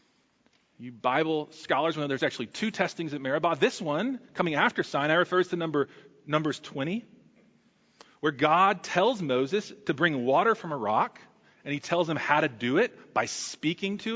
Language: English